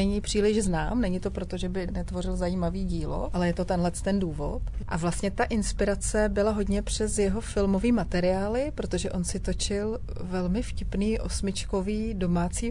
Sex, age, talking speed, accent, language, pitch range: female, 30-49, 165 wpm, native, Czech, 175-195 Hz